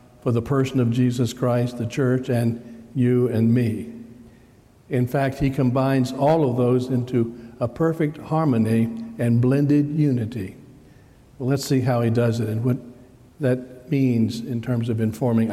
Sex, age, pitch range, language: male, 60-79, 120-140 Hz, English